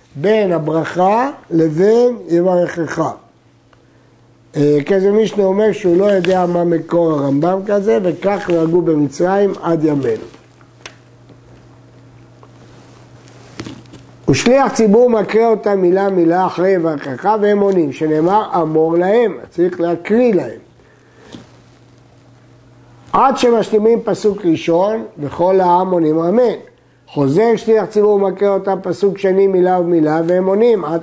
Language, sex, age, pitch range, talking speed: Hebrew, male, 60-79, 155-200 Hz, 105 wpm